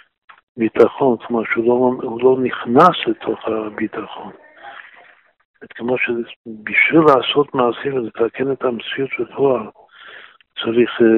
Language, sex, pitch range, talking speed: Hebrew, male, 115-135 Hz, 95 wpm